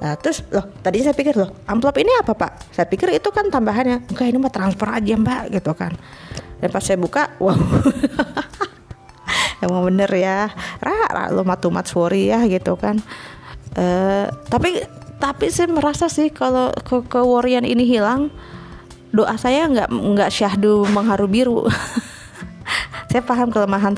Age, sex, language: 20-39, female, English